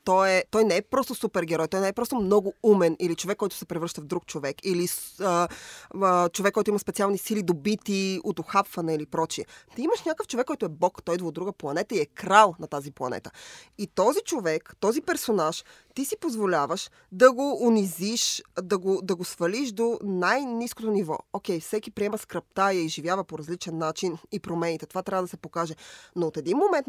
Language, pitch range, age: Bulgarian, 170-220 Hz, 20-39